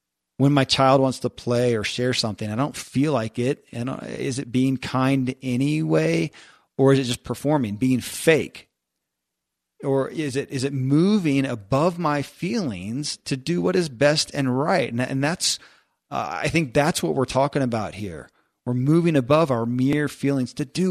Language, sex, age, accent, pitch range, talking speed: English, male, 40-59, American, 110-140 Hz, 180 wpm